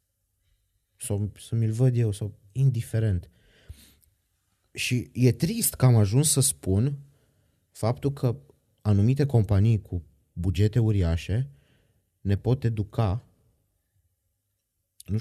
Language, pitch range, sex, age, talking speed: Romanian, 95-125 Hz, male, 20-39, 95 wpm